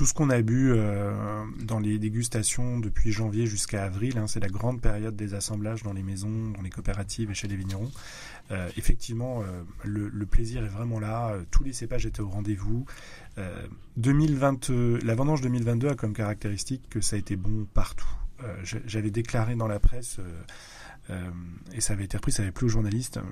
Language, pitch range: French, 110-130 Hz